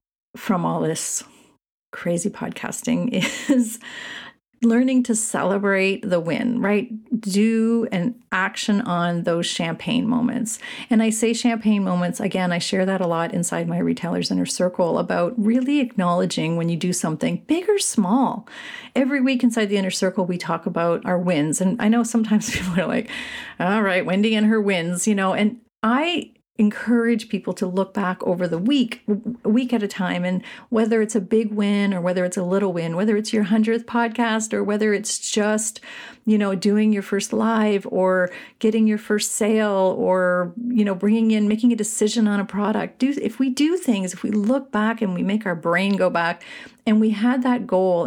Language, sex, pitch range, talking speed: English, female, 185-240 Hz, 185 wpm